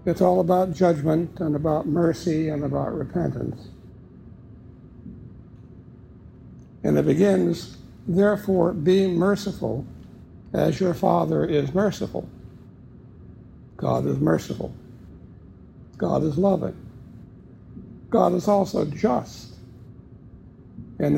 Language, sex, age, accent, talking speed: English, male, 60-79, American, 90 wpm